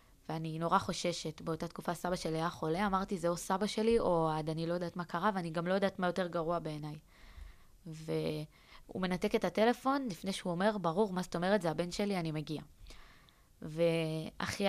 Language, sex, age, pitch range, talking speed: Hebrew, female, 20-39, 165-195 Hz, 185 wpm